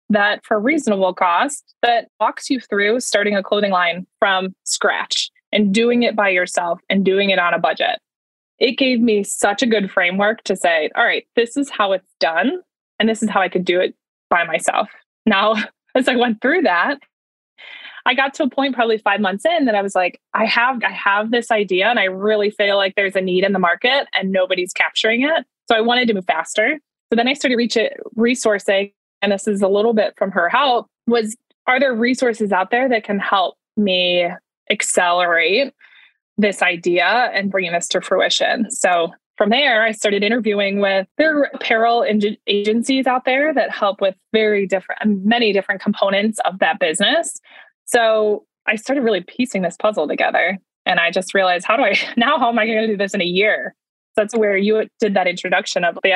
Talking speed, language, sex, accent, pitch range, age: 200 wpm, English, female, American, 195-245 Hz, 20-39